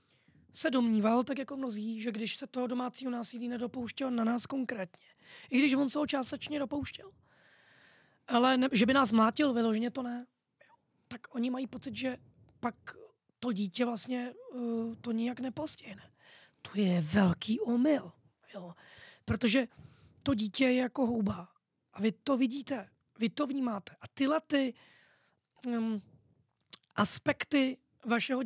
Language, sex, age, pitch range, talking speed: Czech, female, 20-39, 225-270 Hz, 145 wpm